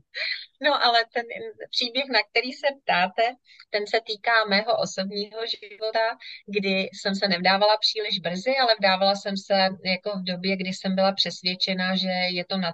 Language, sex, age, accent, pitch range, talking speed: Czech, female, 30-49, native, 175-205 Hz, 165 wpm